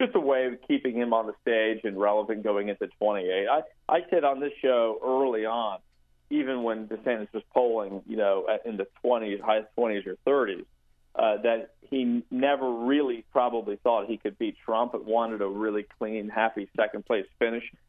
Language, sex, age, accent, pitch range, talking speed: English, male, 40-59, American, 105-125 Hz, 190 wpm